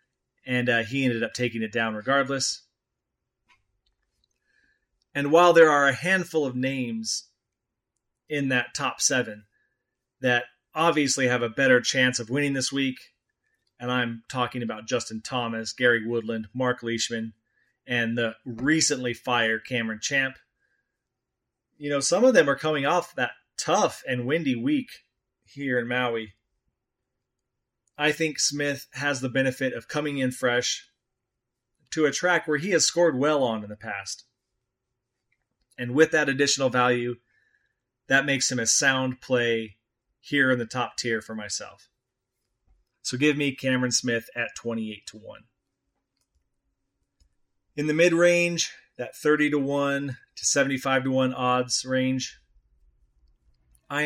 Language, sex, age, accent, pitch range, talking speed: English, male, 30-49, American, 120-140 Hz, 140 wpm